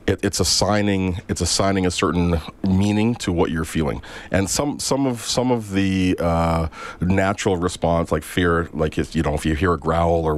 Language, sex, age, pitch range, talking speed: English, male, 40-59, 85-100 Hz, 195 wpm